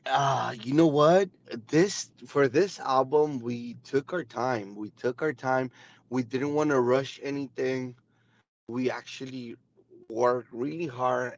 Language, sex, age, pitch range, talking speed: English, male, 30-49, 120-150 Hz, 140 wpm